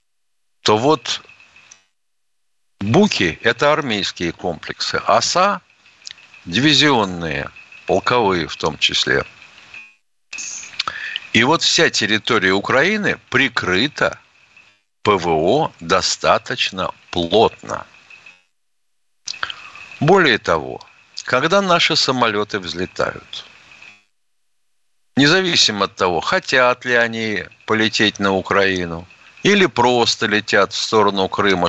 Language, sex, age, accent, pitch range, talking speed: Russian, male, 60-79, native, 95-110 Hz, 80 wpm